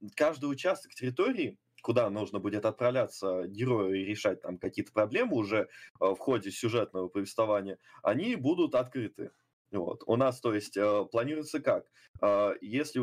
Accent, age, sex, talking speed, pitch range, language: native, 20-39, male, 135 wpm, 100-135 Hz, Russian